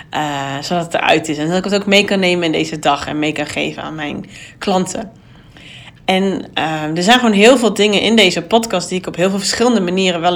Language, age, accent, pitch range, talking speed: Dutch, 30-49, Dutch, 155-195 Hz, 245 wpm